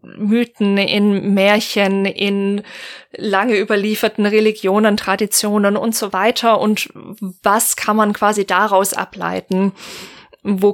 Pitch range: 200-250 Hz